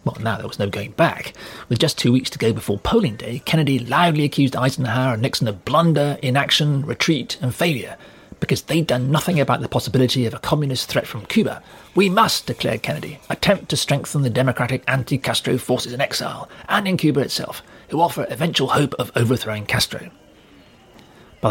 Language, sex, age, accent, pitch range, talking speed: English, male, 40-59, British, 120-155 Hz, 185 wpm